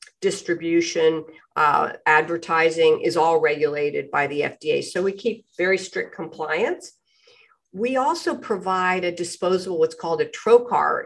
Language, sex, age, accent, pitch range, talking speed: English, female, 50-69, American, 165-260 Hz, 130 wpm